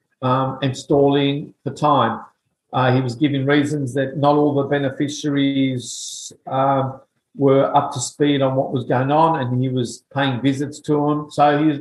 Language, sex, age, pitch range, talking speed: English, male, 50-69, 135-165 Hz, 175 wpm